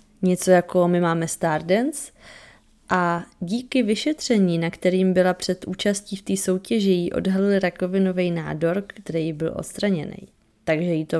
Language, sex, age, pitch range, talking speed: Czech, female, 20-39, 165-205 Hz, 140 wpm